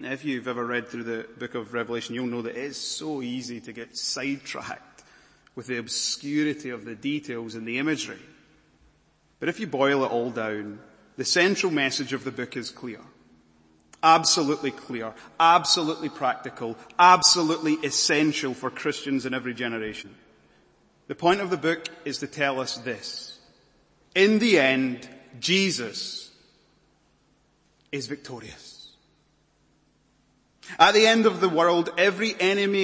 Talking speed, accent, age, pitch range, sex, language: 140 wpm, British, 30-49, 115-155 Hz, male, English